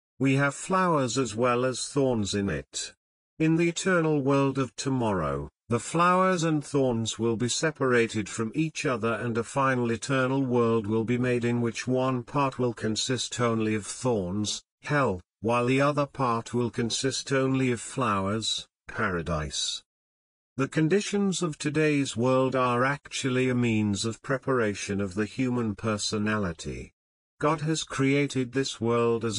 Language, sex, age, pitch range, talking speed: Urdu, male, 50-69, 110-140 Hz, 150 wpm